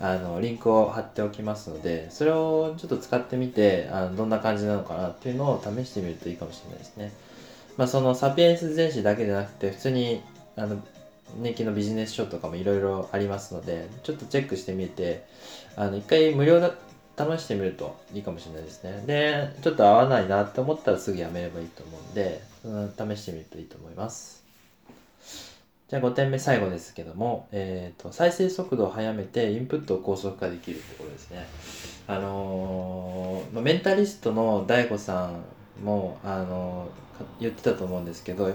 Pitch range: 95-140 Hz